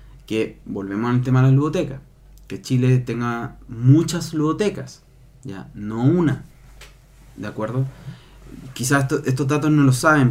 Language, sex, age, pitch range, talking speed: Spanish, male, 20-39, 120-145 Hz, 135 wpm